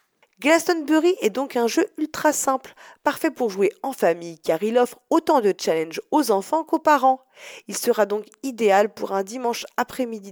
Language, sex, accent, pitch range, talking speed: French, female, French, 190-275 Hz, 175 wpm